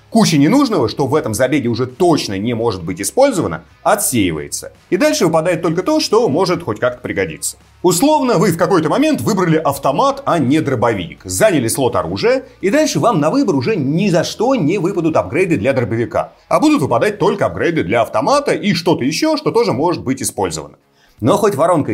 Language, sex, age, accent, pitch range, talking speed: Russian, male, 30-49, native, 120-185 Hz, 185 wpm